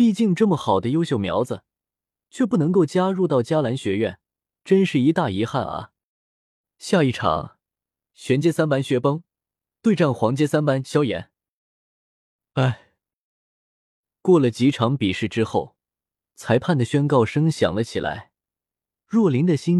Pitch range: 110-160 Hz